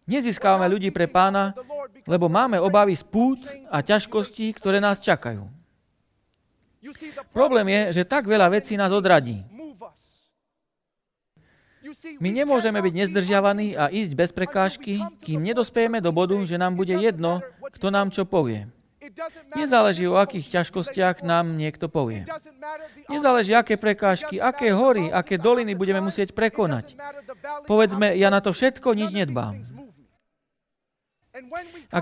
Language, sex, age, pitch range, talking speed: Slovak, male, 40-59, 170-235 Hz, 125 wpm